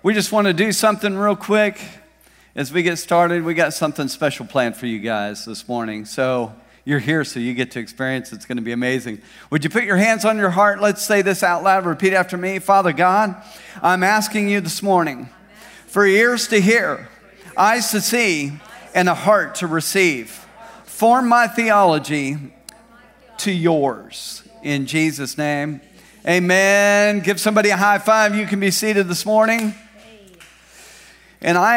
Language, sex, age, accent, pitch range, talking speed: English, male, 40-59, American, 150-210 Hz, 175 wpm